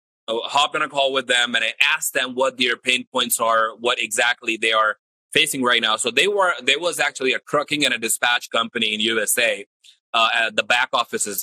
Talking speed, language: 225 wpm, English